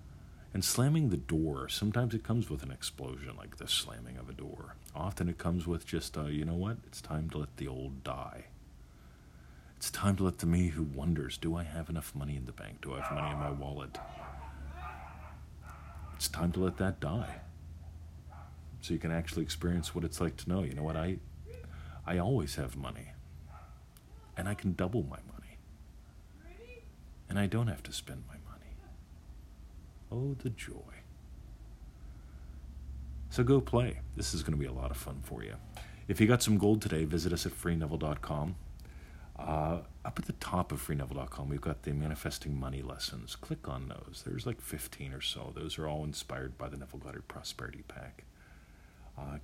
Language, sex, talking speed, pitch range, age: English, male, 180 wpm, 70-85 Hz, 50-69